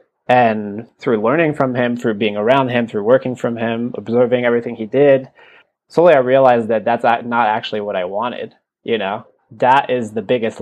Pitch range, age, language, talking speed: 110-125 Hz, 20-39, English, 185 wpm